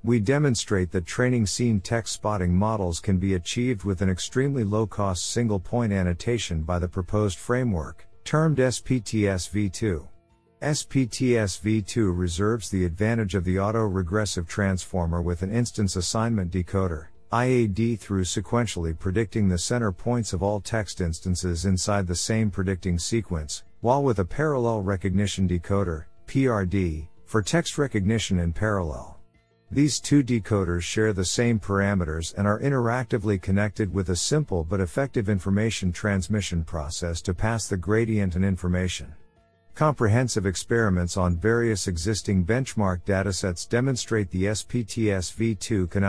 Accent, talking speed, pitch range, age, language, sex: American, 130 wpm, 90-115 Hz, 50-69, English, male